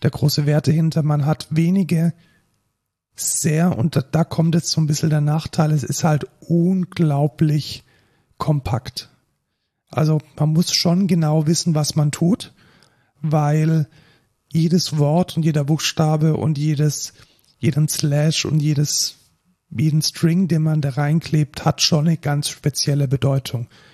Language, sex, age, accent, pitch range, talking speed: German, male, 40-59, German, 140-160 Hz, 140 wpm